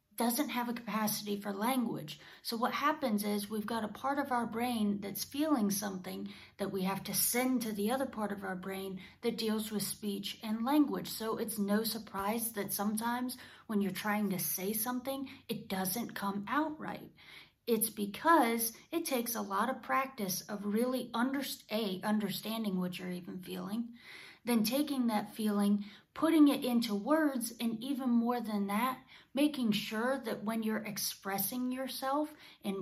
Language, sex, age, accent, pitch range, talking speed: English, female, 30-49, American, 200-245 Hz, 165 wpm